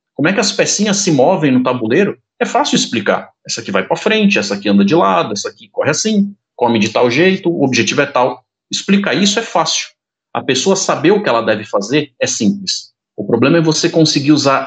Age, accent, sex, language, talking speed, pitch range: 40-59, Brazilian, male, Portuguese, 220 wpm, 125-170 Hz